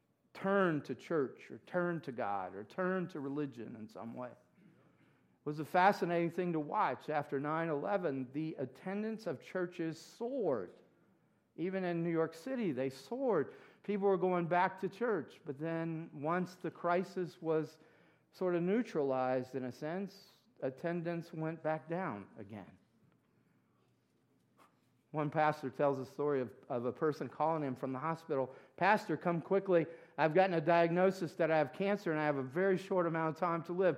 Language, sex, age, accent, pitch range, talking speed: English, male, 50-69, American, 145-185 Hz, 165 wpm